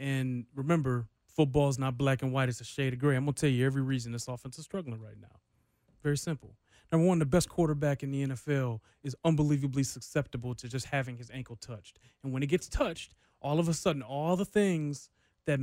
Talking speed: 225 wpm